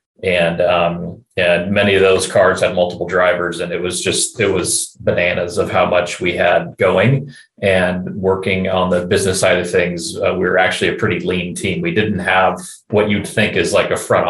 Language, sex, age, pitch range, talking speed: English, male, 30-49, 90-100 Hz, 205 wpm